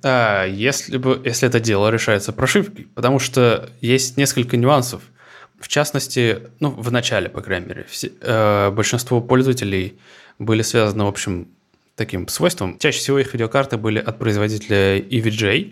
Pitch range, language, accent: 105-125 Hz, Russian, native